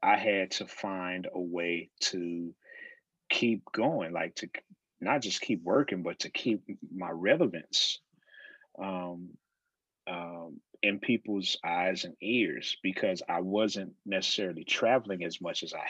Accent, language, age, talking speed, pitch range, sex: American, English, 30-49, 135 wpm, 90-125 Hz, male